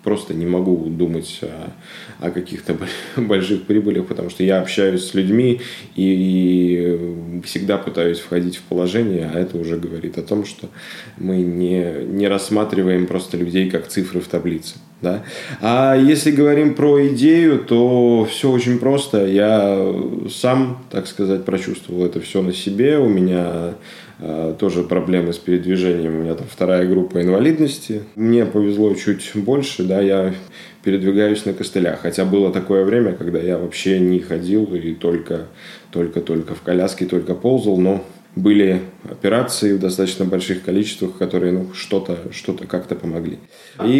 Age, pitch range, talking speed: 20-39, 90-110 Hz, 145 wpm